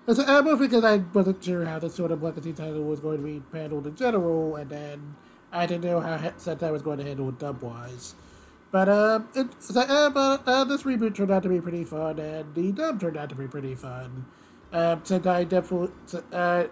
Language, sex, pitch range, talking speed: English, male, 145-190 Hz, 210 wpm